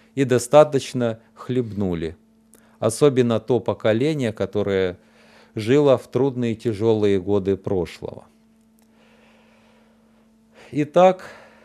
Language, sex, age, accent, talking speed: Russian, male, 40-59, native, 75 wpm